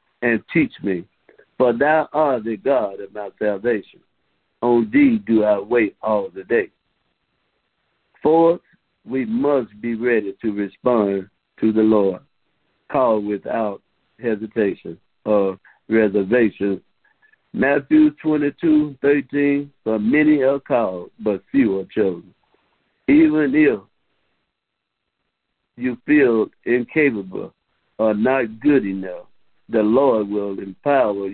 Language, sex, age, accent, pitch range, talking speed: English, male, 60-79, American, 105-145 Hz, 110 wpm